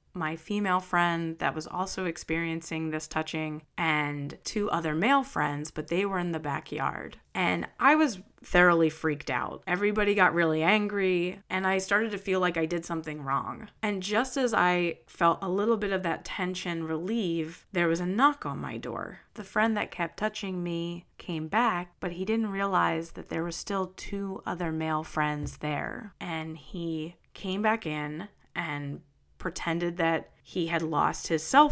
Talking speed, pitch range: 175 wpm, 160-195 Hz